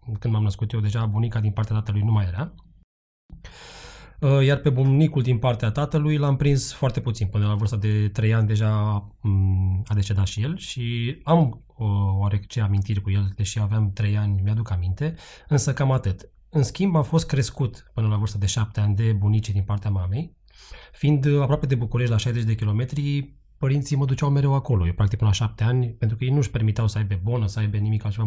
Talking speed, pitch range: 205 wpm, 105-135 Hz